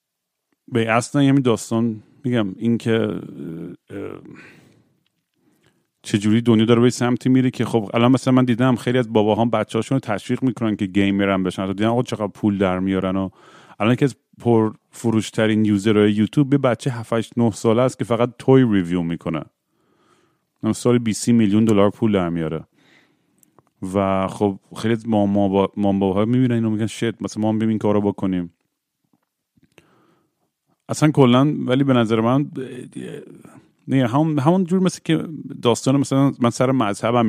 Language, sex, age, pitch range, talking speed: Persian, male, 40-59, 100-125 Hz, 155 wpm